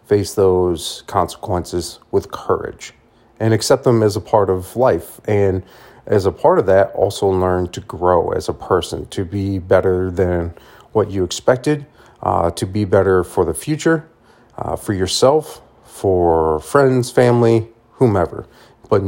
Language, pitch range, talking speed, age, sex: English, 90-115 Hz, 150 wpm, 40-59, male